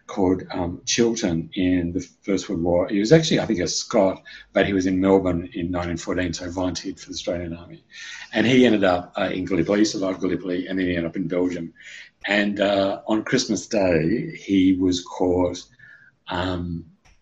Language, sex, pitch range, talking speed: English, male, 85-105 Hz, 190 wpm